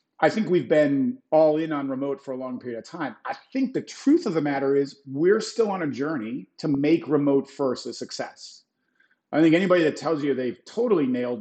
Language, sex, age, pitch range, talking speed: English, male, 40-59, 130-180 Hz, 220 wpm